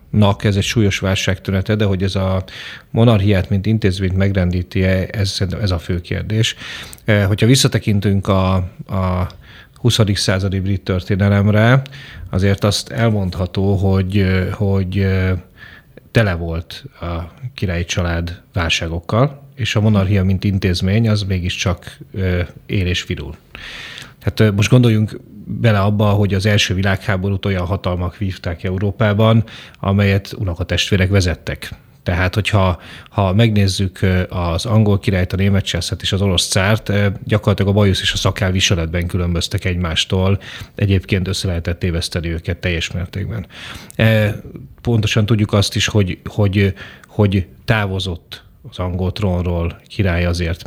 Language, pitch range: Hungarian, 90-105 Hz